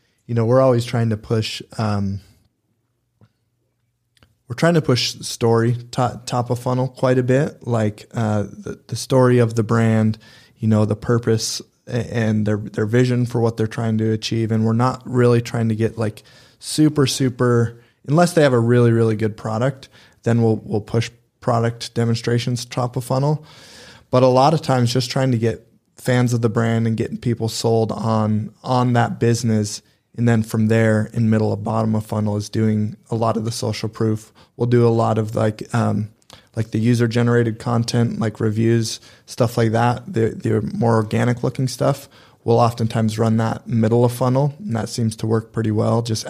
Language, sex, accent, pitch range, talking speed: English, male, American, 110-120 Hz, 190 wpm